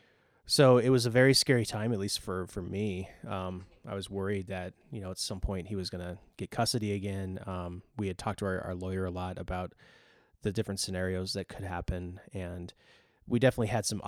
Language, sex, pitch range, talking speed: English, male, 90-105 Hz, 215 wpm